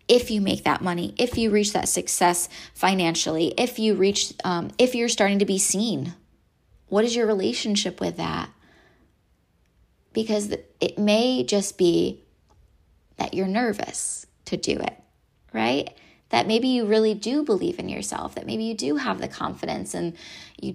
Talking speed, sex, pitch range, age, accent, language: 160 wpm, female, 185-225 Hz, 20-39, American, English